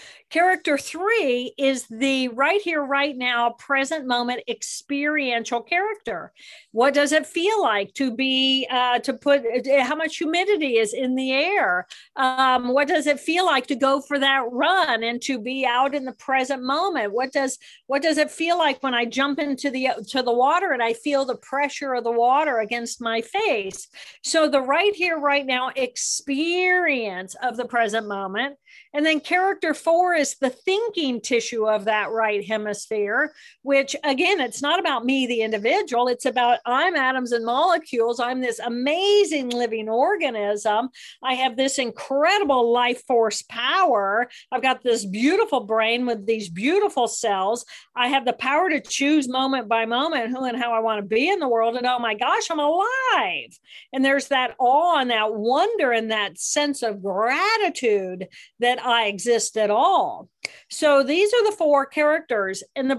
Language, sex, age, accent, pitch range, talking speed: English, female, 50-69, American, 235-310 Hz, 170 wpm